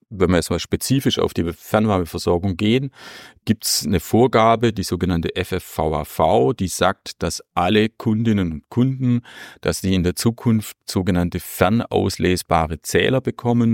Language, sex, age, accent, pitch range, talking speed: German, male, 40-59, German, 85-110 Hz, 140 wpm